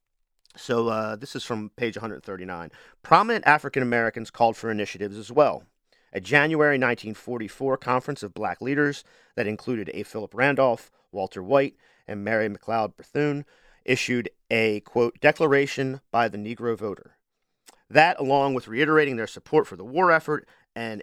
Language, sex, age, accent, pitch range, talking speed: English, male, 40-59, American, 115-150 Hz, 145 wpm